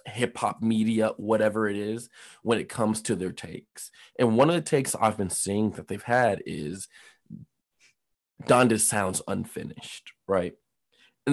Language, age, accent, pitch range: English, 20-39, American, 105-135 Hz